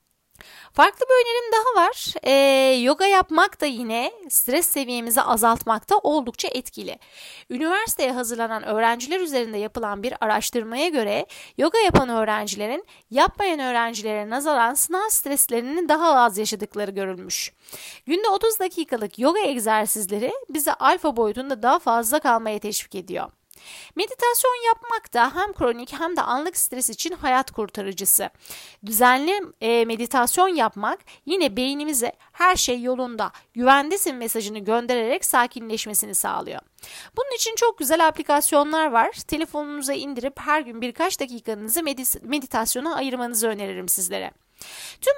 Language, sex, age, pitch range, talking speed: Turkish, female, 30-49, 225-315 Hz, 120 wpm